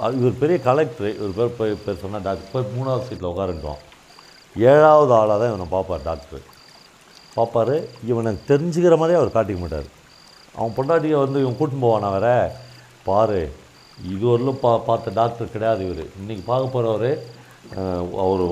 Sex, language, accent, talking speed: male, Tamil, native, 140 wpm